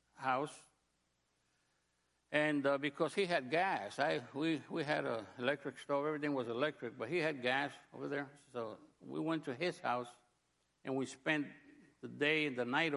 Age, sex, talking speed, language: 60-79, male, 170 wpm, English